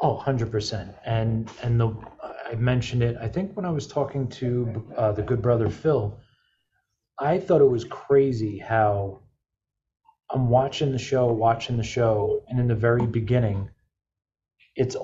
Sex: male